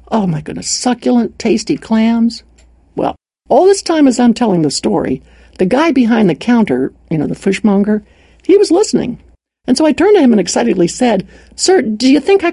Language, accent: English, American